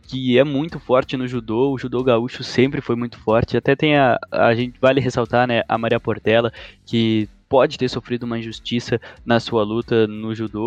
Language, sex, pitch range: Portuguese, male, 115-140 Hz